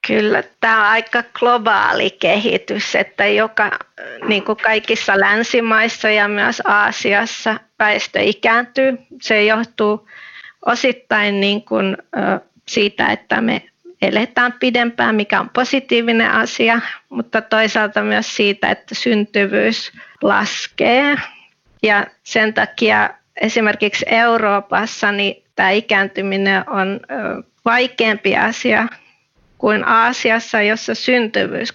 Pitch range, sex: 210-235 Hz, female